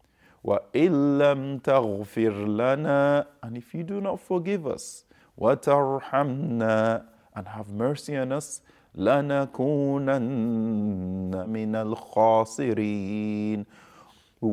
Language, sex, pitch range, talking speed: English, male, 110-160 Hz, 55 wpm